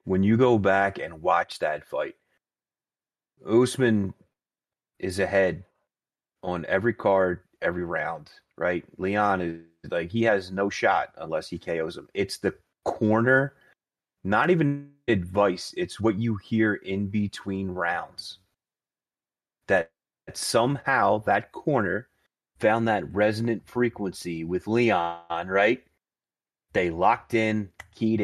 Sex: male